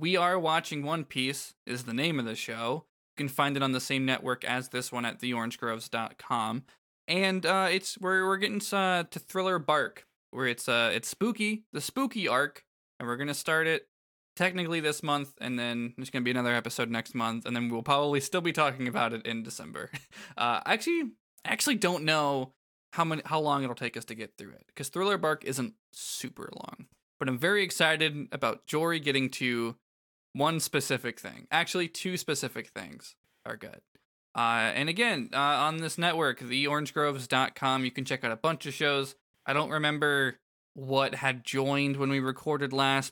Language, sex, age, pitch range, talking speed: English, male, 20-39, 120-160 Hz, 190 wpm